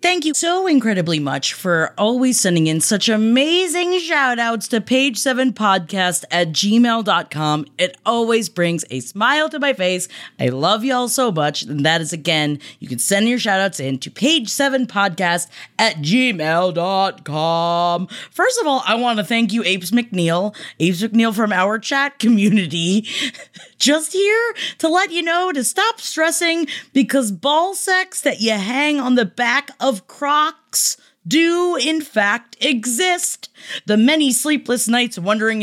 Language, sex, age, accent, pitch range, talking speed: English, female, 20-39, American, 190-285 Hz, 150 wpm